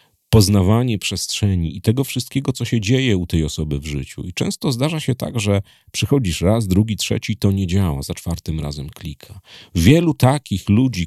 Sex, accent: male, native